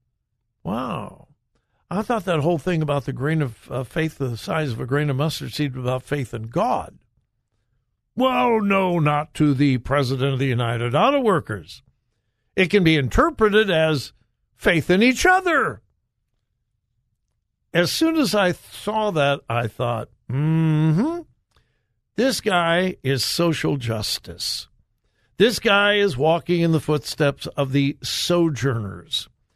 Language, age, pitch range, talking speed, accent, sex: English, 60-79, 125-175 Hz, 140 wpm, American, male